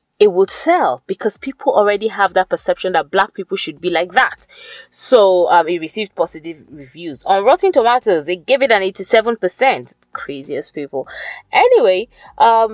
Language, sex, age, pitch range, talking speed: English, female, 30-49, 170-255 Hz, 160 wpm